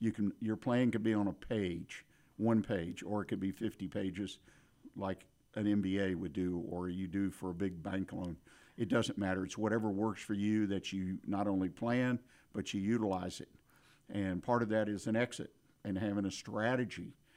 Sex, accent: male, American